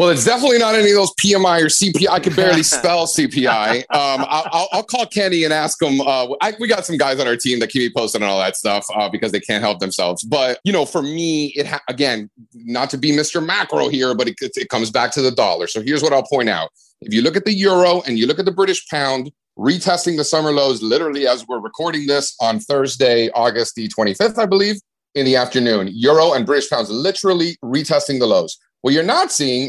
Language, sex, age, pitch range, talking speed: English, male, 40-59, 125-185 Hz, 240 wpm